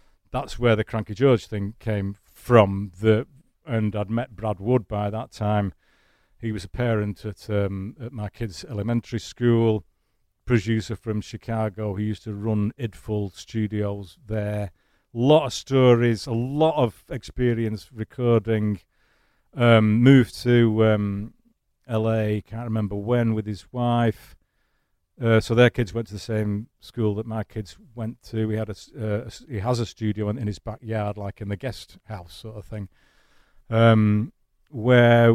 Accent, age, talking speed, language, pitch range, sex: British, 40-59, 160 wpm, English, 105-115 Hz, male